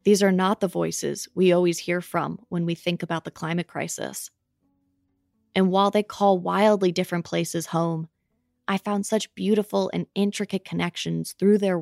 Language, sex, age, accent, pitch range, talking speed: English, female, 20-39, American, 170-195 Hz, 170 wpm